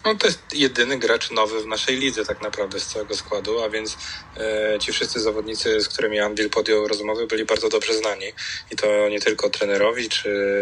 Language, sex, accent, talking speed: Polish, male, native, 200 wpm